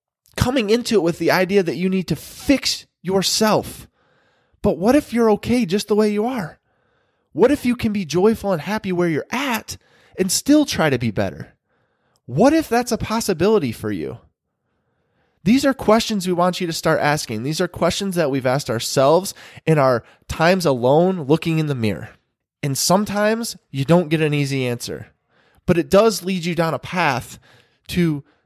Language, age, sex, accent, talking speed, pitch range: English, 20-39, male, American, 185 wpm, 140-205 Hz